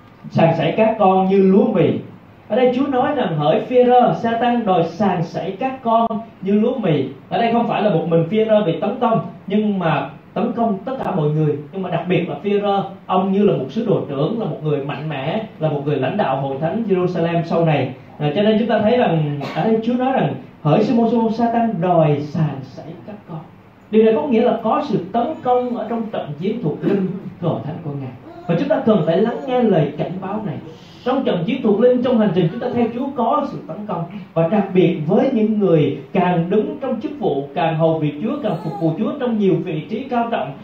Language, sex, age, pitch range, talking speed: Vietnamese, male, 20-39, 160-225 Hz, 240 wpm